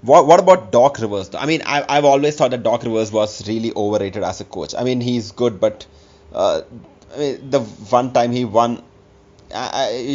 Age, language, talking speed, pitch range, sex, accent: 30-49, English, 200 wpm, 105-130 Hz, male, Indian